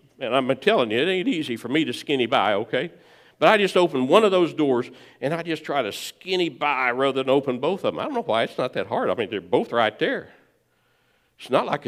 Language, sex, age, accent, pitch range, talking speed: English, male, 60-79, American, 120-175 Hz, 260 wpm